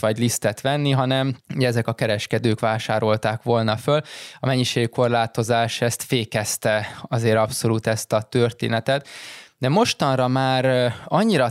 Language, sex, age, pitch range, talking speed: Hungarian, male, 20-39, 110-130 Hz, 120 wpm